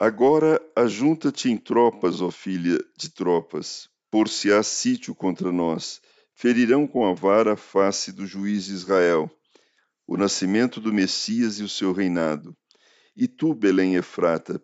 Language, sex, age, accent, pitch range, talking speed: Portuguese, male, 50-69, Brazilian, 95-120 Hz, 150 wpm